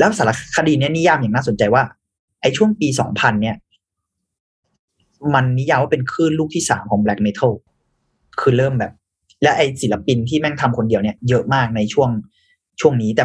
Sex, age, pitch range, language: male, 30-49, 105-150 Hz, Thai